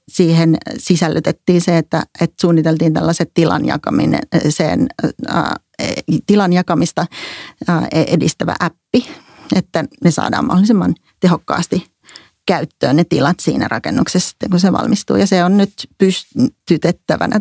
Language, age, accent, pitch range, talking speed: Finnish, 40-59, native, 160-195 Hz, 105 wpm